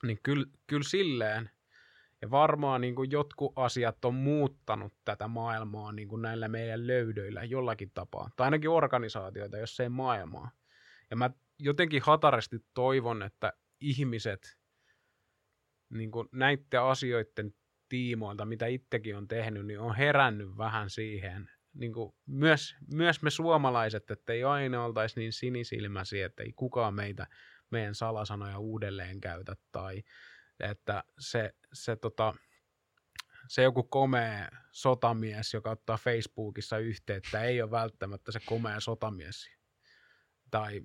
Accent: native